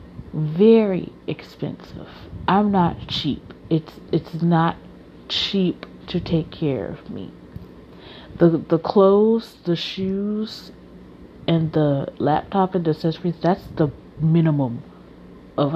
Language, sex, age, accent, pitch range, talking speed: English, female, 30-49, American, 150-185 Hz, 110 wpm